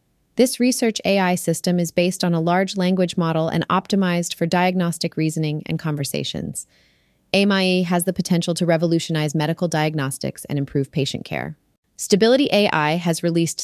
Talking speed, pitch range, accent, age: 150 wpm, 165-200 Hz, American, 30-49